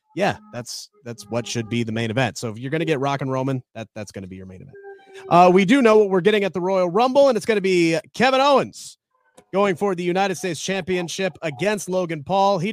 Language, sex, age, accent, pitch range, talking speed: English, male, 30-49, American, 140-185 Hz, 250 wpm